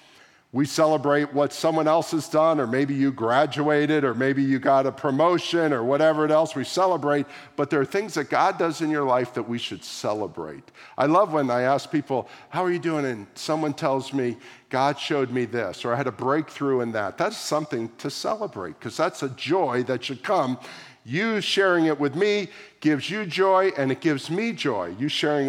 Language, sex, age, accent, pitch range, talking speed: English, male, 50-69, American, 125-155 Hz, 205 wpm